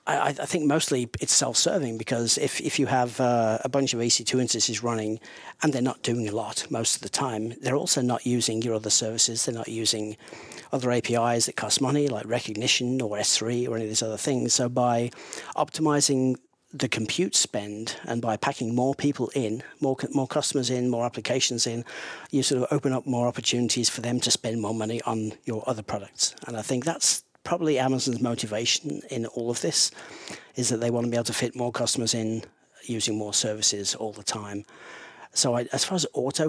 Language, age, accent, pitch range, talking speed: English, 40-59, British, 115-130 Hz, 200 wpm